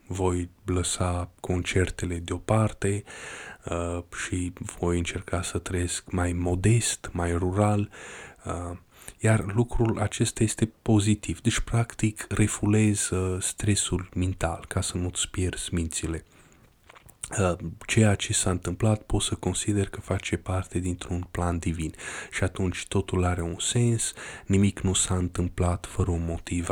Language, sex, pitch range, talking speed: Romanian, male, 90-105 Hz, 130 wpm